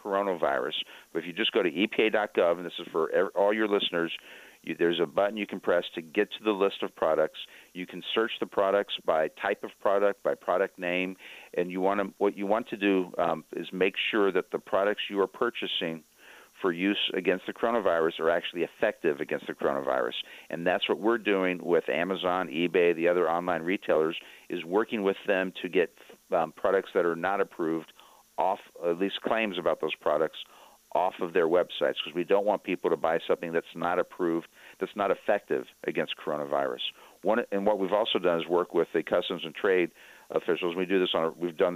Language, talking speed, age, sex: English, 205 wpm, 50-69, male